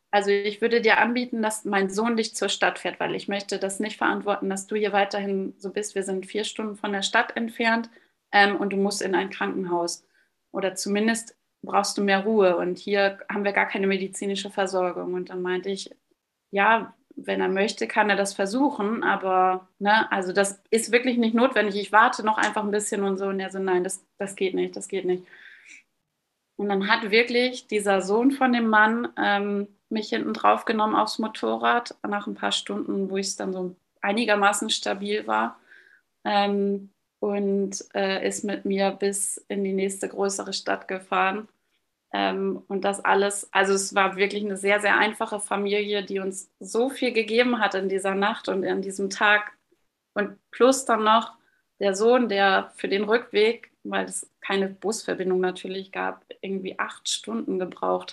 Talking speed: 180 wpm